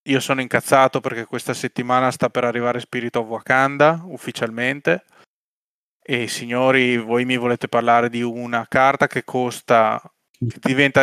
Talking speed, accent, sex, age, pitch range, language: 140 wpm, native, male, 20-39, 120-140 Hz, Italian